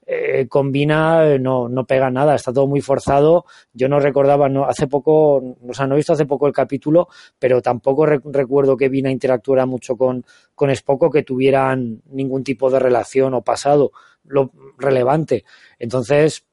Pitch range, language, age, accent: 130-150 Hz, Spanish, 20-39, Spanish